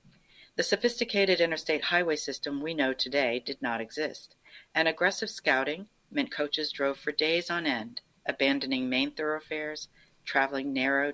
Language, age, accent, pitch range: English, 50-69, American, 135-175 Hz